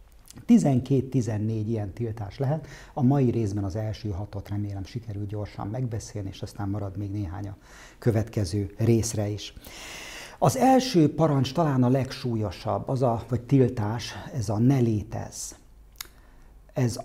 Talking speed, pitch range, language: 135 wpm, 105-125 Hz, Hungarian